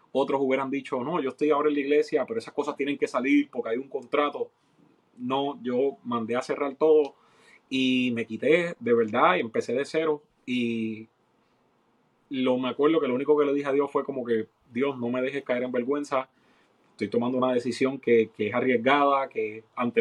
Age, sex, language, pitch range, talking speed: 30-49, male, Spanish, 120-145 Hz, 200 wpm